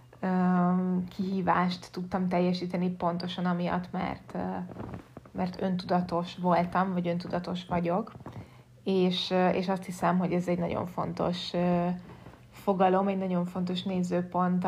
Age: 20-39